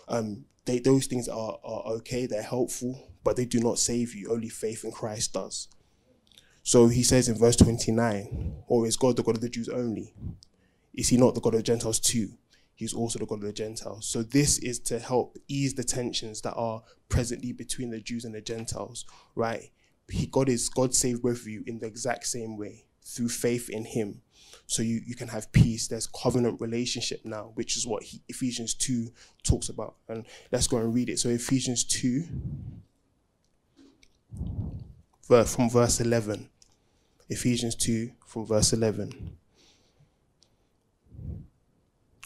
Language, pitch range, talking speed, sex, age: English, 110-125 Hz, 160 wpm, male, 20-39